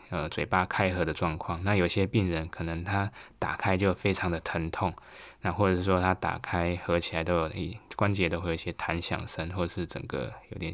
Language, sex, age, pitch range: Chinese, male, 20-39, 85-95 Hz